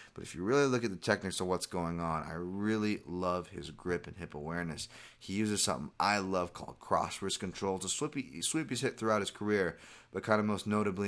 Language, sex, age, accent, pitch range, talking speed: English, male, 30-49, American, 85-100 Hz, 215 wpm